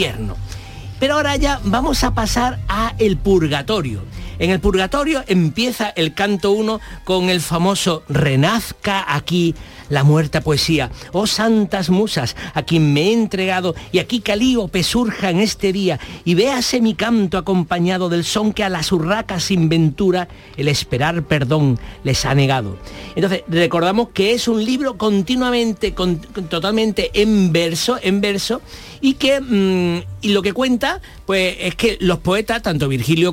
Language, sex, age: Spanish, male, 50-69